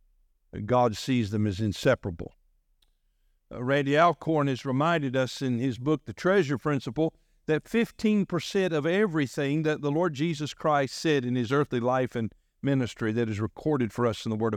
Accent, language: American, English